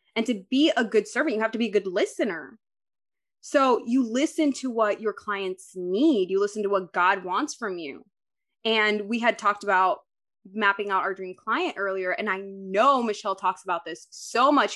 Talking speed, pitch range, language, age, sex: 200 wpm, 210-310 Hz, English, 20-39, female